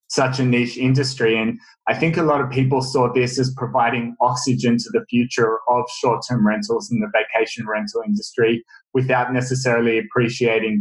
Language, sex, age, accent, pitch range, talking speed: English, male, 20-39, Australian, 115-135 Hz, 165 wpm